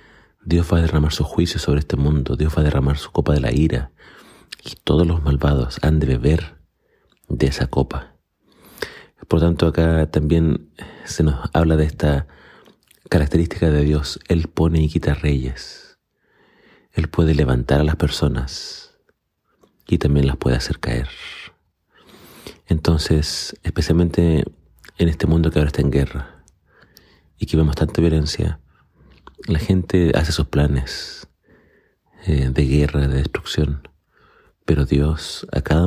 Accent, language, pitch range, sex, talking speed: Argentinian, Spanish, 70-85 Hz, male, 140 wpm